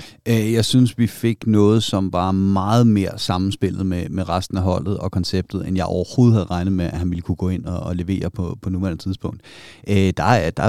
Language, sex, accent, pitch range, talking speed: Danish, male, native, 90-110 Hz, 230 wpm